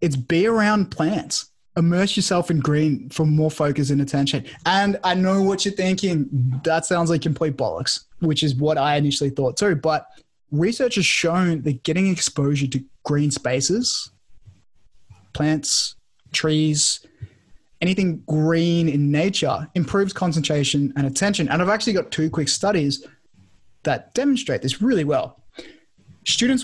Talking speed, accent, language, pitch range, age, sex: 145 wpm, Australian, English, 145-185 Hz, 20-39, male